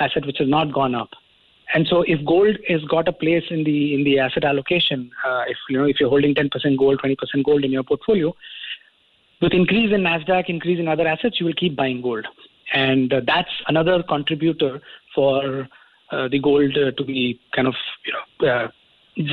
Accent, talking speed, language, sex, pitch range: Indian, 195 wpm, English, male, 140-180 Hz